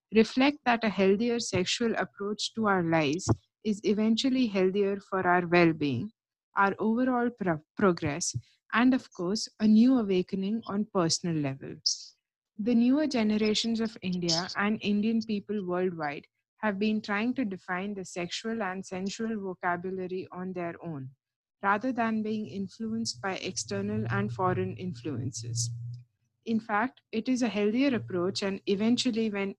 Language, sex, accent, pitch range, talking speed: English, female, Indian, 175-220 Hz, 140 wpm